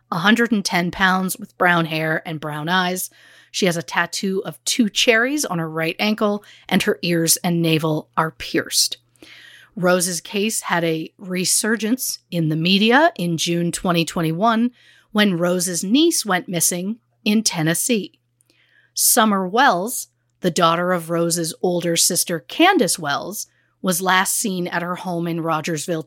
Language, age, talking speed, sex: English, 40-59, 145 wpm, female